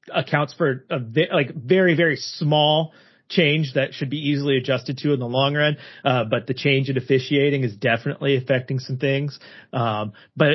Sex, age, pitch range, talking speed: male, 30-49, 130-160 Hz, 180 wpm